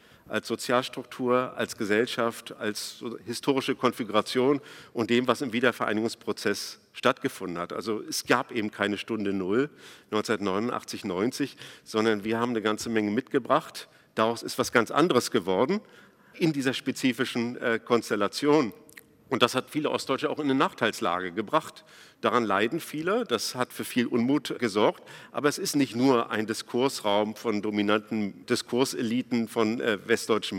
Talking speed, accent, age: 140 wpm, German, 50-69